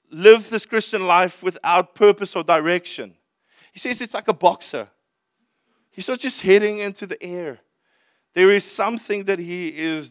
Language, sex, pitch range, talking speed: English, male, 185-250 Hz, 160 wpm